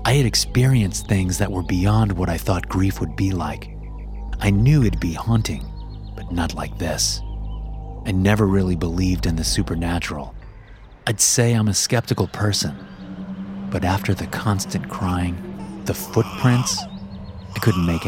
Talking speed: 155 wpm